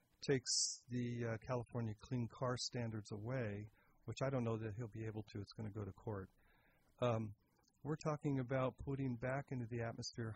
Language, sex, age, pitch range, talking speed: English, male, 40-59, 110-125 Hz, 185 wpm